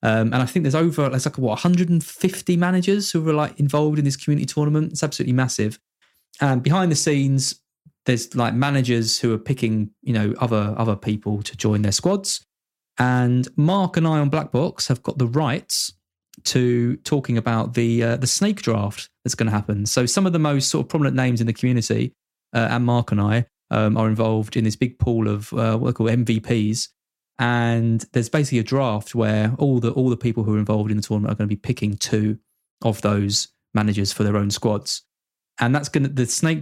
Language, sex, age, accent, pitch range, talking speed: English, male, 20-39, British, 110-140 Hz, 215 wpm